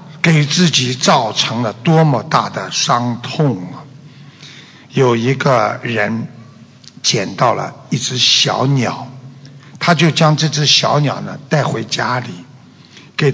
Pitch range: 135-175 Hz